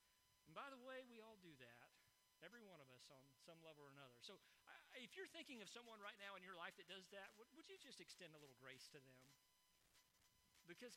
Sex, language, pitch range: male, English, 165-235 Hz